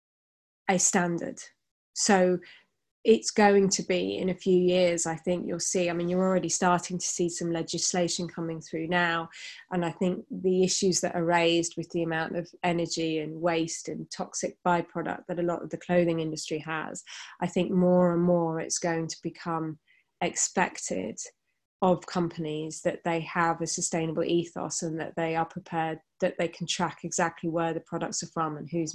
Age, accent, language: 20-39, British, English